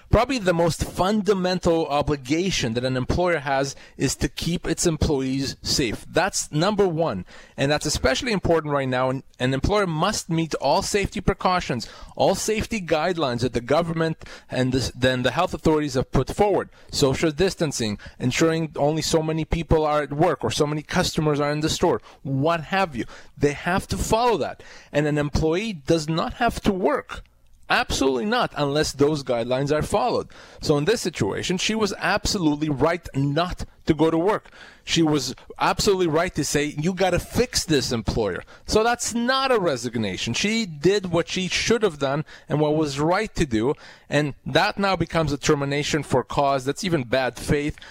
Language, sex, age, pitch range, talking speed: English, male, 30-49, 135-180 Hz, 180 wpm